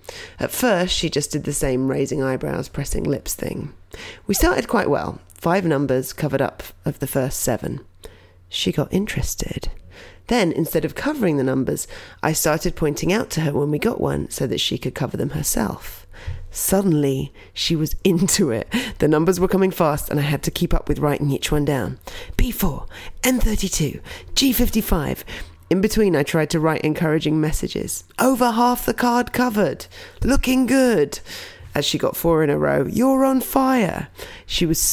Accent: British